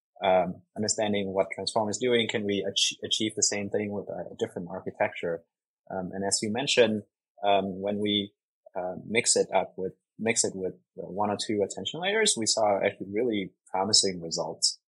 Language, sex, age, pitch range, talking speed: English, male, 20-39, 95-110 Hz, 180 wpm